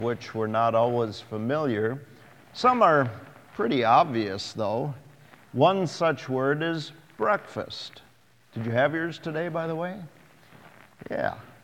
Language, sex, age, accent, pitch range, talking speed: English, male, 50-69, American, 120-150 Hz, 125 wpm